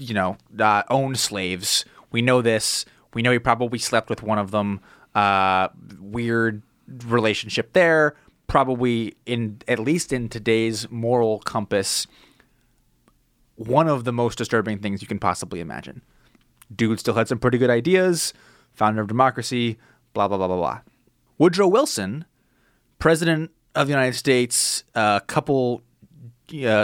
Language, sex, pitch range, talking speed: English, male, 110-130 Hz, 145 wpm